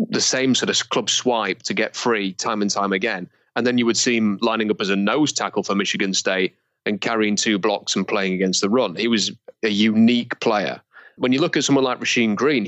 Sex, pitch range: male, 100-120 Hz